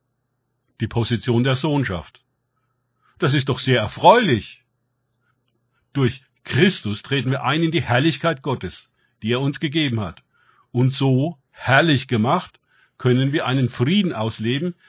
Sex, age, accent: male, 50-69, German